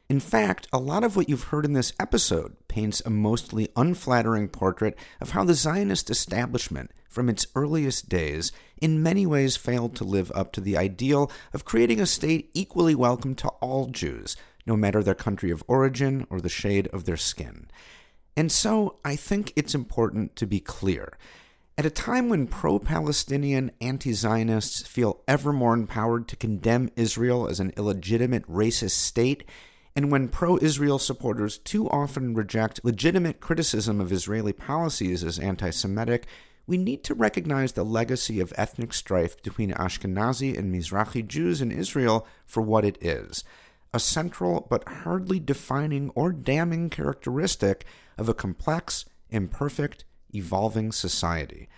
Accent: American